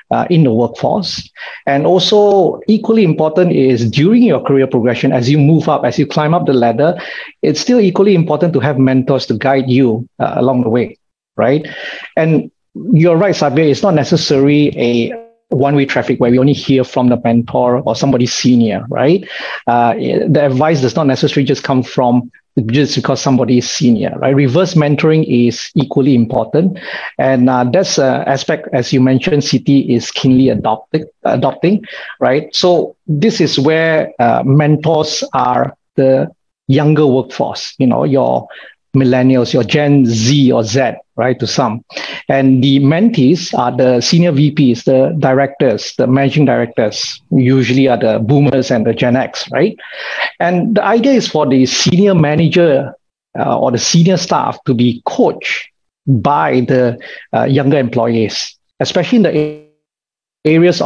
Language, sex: English, male